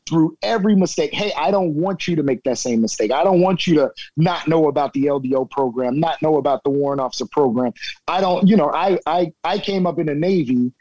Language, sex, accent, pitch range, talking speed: English, male, American, 135-170 Hz, 240 wpm